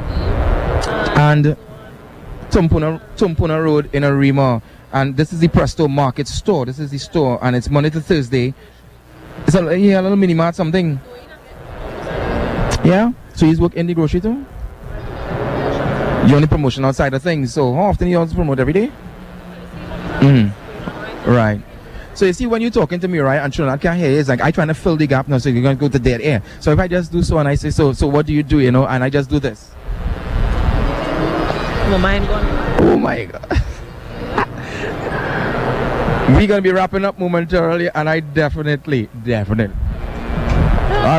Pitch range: 130-170 Hz